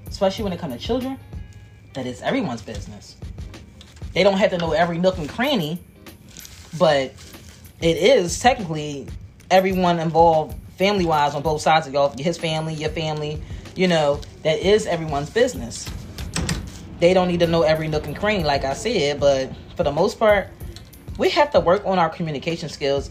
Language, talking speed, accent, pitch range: English, 170 wpm, American, 125-185 Hz